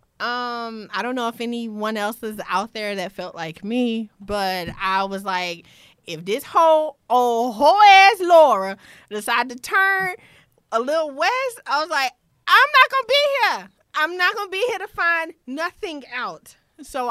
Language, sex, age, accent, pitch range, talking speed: English, female, 20-39, American, 225-335 Hz, 180 wpm